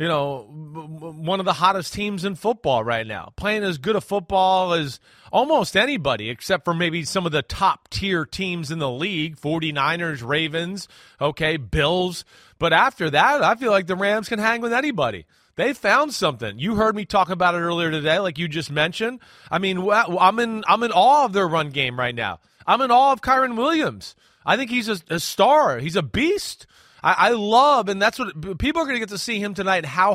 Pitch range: 155-205 Hz